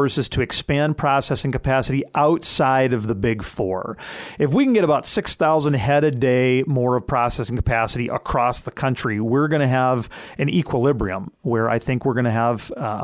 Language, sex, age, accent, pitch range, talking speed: English, male, 40-59, American, 125-145 Hz, 185 wpm